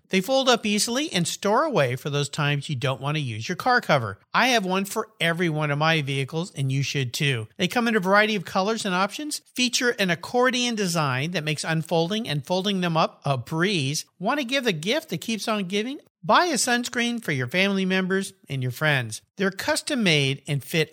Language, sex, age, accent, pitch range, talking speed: English, male, 50-69, American, 140-215 Hz, 220 wpm